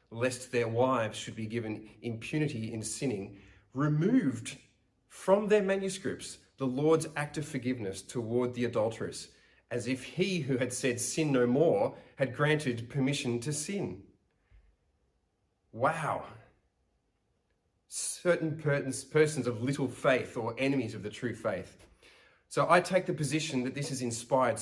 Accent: Australian